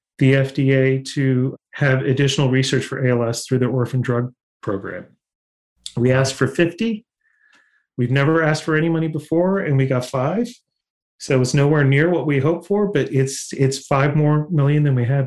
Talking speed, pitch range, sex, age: 175 wpm, 125-150 Hz, male, 30-49